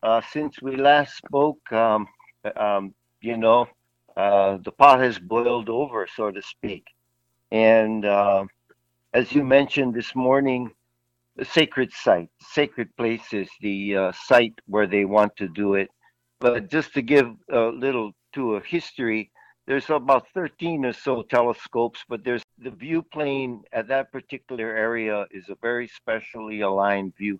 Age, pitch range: 60-79, 105-125 Hz